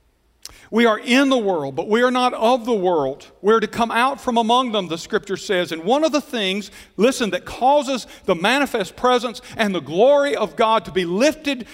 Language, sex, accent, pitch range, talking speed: English, male, American, 185-250 Hz, 215 wpm